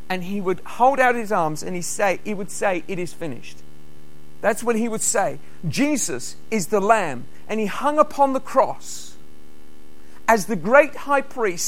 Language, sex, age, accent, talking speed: English, male, 50-69, British, 185 wpm